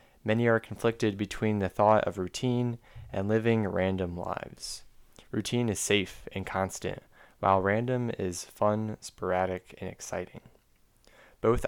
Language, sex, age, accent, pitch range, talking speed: English, male, 20-39, American, 95-115 Hz, 130 wpm